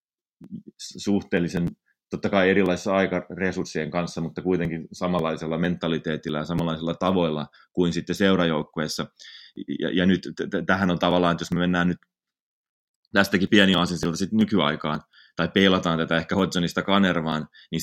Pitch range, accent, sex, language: 80-90 Hz, native, male, Finnish